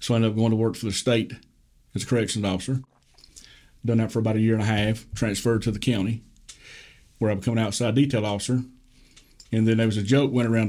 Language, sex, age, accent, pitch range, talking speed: English, male, 40-59, American, 105-125 Hz, 235 wpm